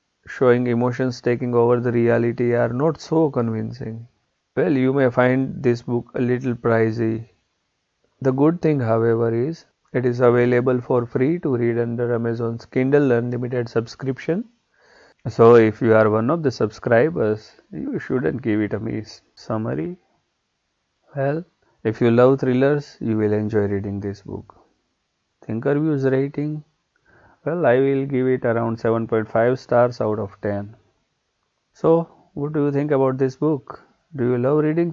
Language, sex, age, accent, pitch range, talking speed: English, male, 30-49, Indian, 110-135 Hz, 150 wpm